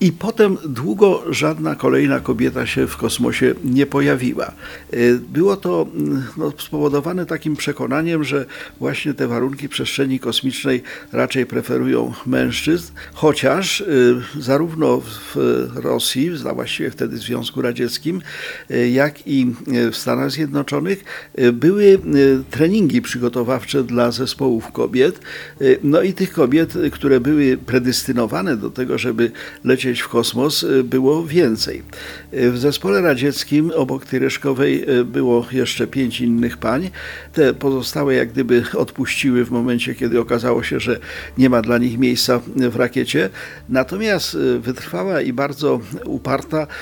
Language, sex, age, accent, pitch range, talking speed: Polish, male, 50-69, native, 125-150 Hz, 120 wpm